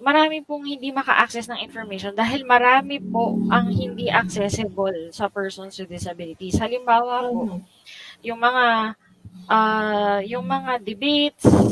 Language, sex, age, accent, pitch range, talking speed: Filipino, female, 20-39, native, 195-245 Hz, 125 wpm